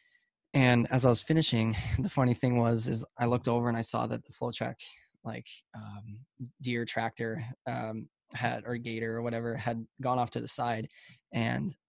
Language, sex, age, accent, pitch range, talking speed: English, male, 20-39, American, 115-135 Hz, 185 wpm